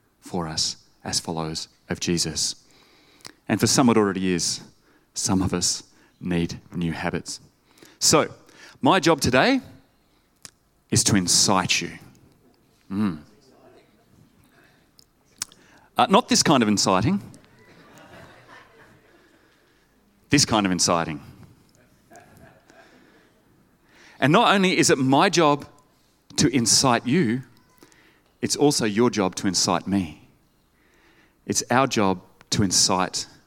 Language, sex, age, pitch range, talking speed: English, male, 30-49, 95-145 Hz, 105 wpm